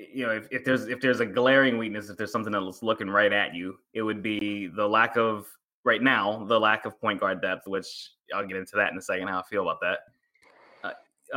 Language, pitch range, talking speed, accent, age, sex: English, 105-125 Hz, 245 wpm, American, 20-39, male